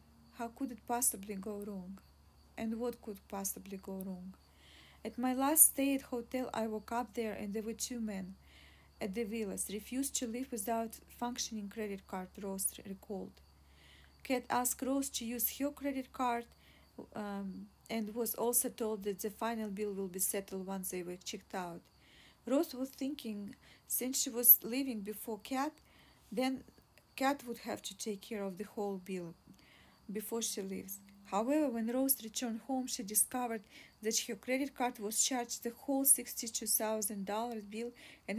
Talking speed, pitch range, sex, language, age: 165 wpm, 200-250 Hz, female, English, 40-59